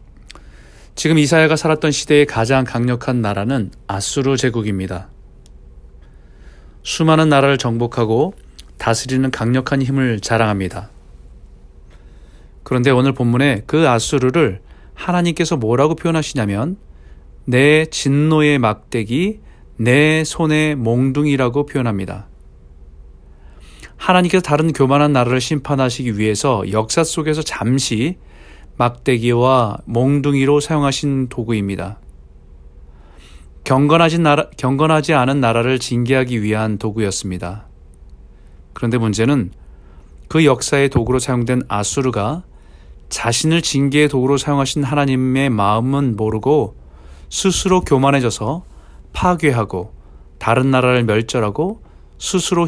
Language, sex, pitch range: Korean, male, 95-145 Hz